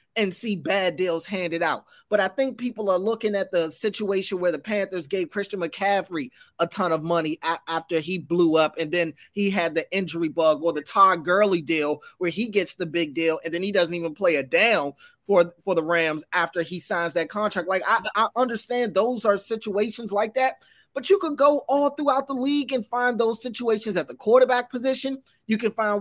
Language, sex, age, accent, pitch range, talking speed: English, male, 30-49, American, 170-225 Hz, 210 wpm